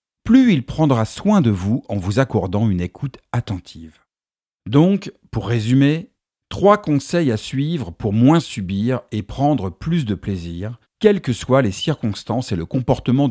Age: 50-69